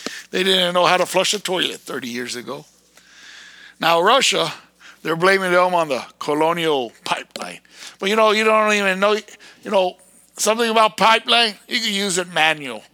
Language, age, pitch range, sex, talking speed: English, 60-79, 170-250 Hz, male, 170 wpm